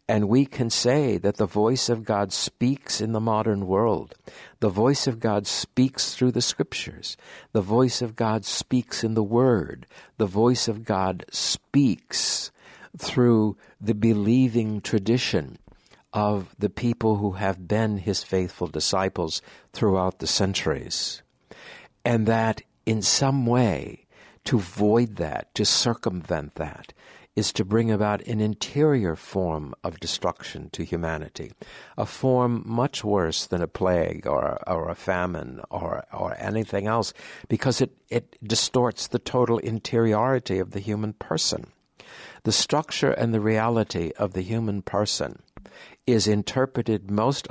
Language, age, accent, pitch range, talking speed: English, 60-79, American, 100-120 Hz, 140 wpm